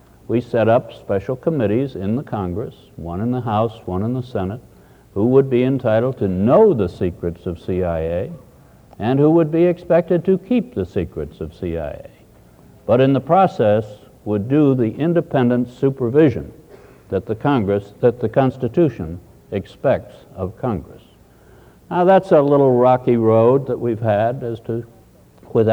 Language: English